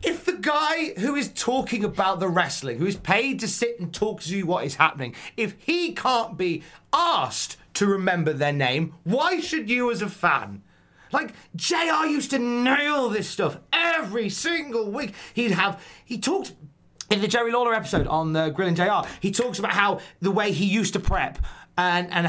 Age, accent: 30-49, British